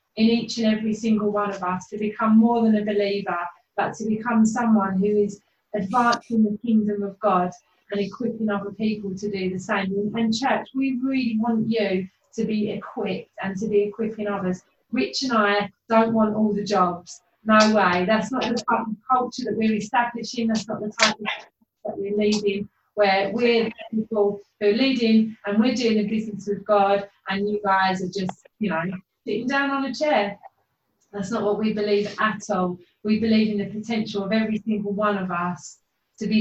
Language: English